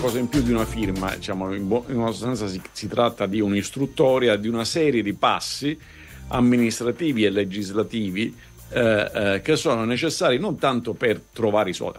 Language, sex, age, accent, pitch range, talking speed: Italian, male, 50-69, native, 95-115 Hz, 180 wpm